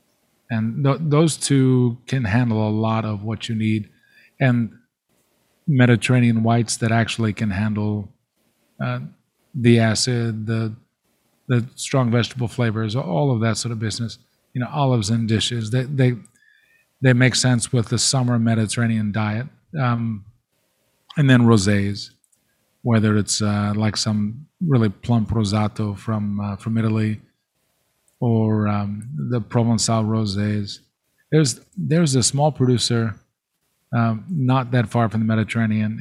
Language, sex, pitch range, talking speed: English, male, 110-125 Hz, 135 wpm